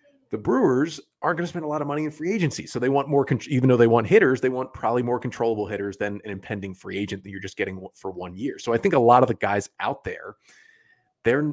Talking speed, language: 265 wpm, English